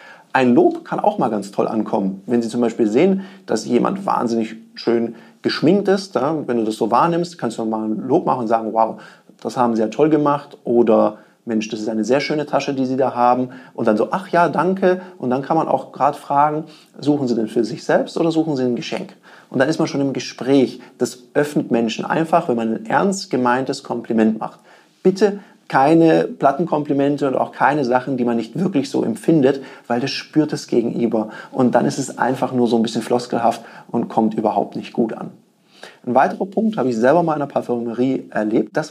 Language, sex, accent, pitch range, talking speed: German, male, German, 120-160 Hz, 215 wpm